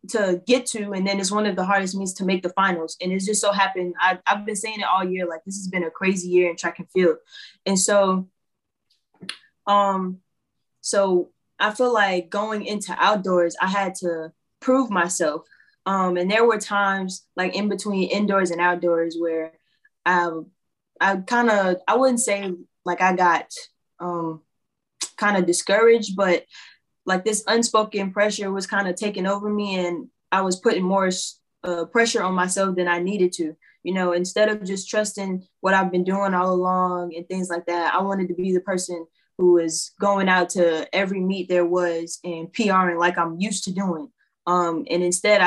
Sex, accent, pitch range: female, American, 175-200 Hz